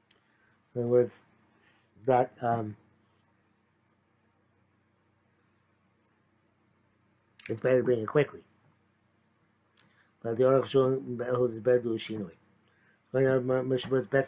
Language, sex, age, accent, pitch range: English, male, 60-79, American, 120-185 Hz